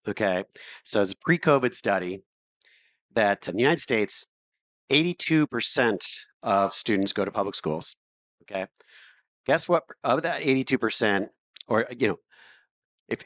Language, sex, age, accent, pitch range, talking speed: English, male, 40-59, American, 95-125 Hz, 135 wpm